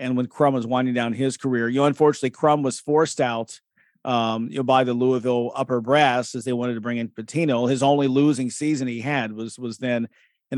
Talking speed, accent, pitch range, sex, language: 225 wpm, American, 125-150 Hz, male, English